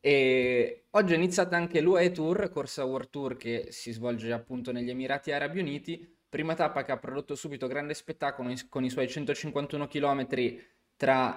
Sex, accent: male, native